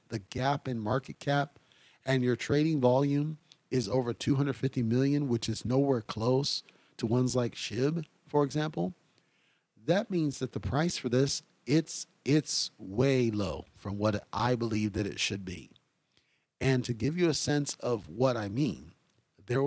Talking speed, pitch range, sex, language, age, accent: 160 wpm, 115-140 Hz, male, English, 40-59, American